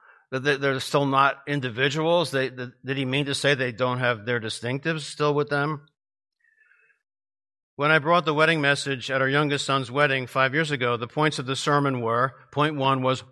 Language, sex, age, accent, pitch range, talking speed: English, male, 50-69, American, 135-185 Hz, 180 wpm